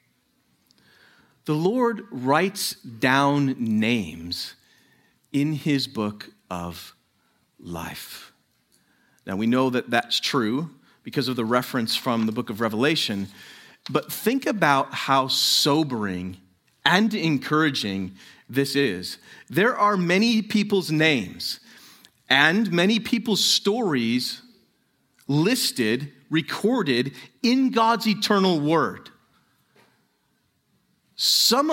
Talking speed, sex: 95 wpm, male